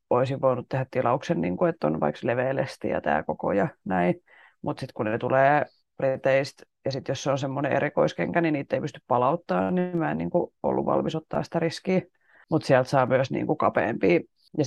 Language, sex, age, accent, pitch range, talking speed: Finnish, female, 30-49, native, 130-170 Hz, 205 wpm